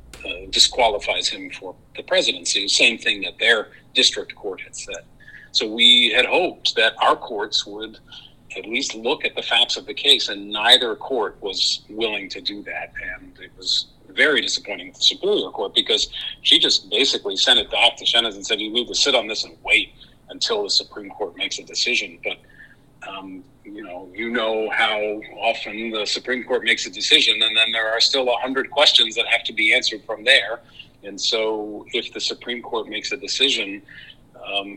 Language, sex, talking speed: English, male, 190 wpm